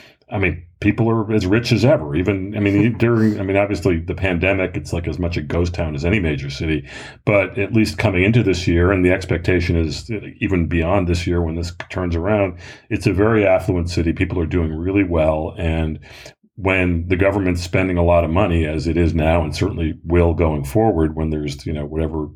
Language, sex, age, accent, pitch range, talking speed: English, male, 40-59, American, 85-105 Hz, 215 wpm